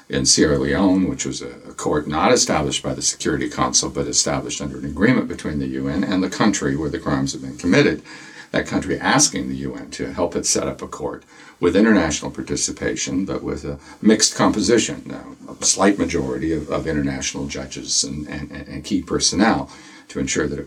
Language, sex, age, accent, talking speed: English, male, 60-79, American, 190 wpm